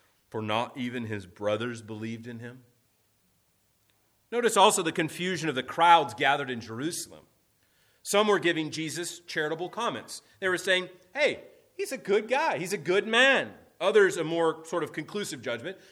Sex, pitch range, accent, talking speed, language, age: male, 115-175 Hz, American, 160 wpm, English, 30-49